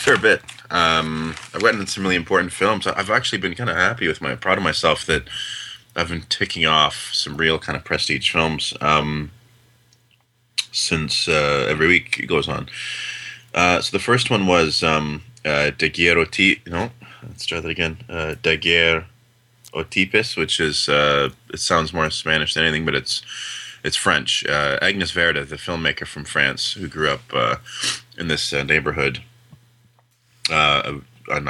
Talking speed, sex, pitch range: 170 wpm, male, 75-95 Hz